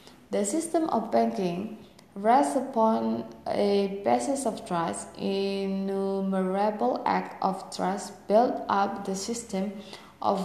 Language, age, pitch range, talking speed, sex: English, 20-39, 190-235 Hz, 110 wpm, female